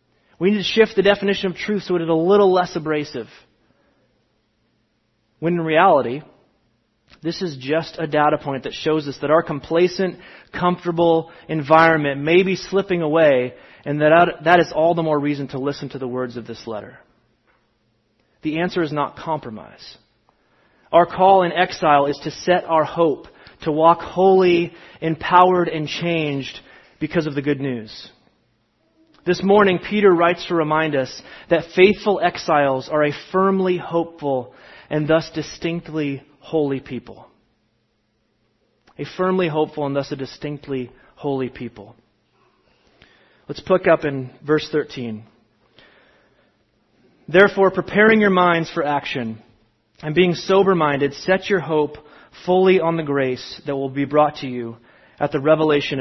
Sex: male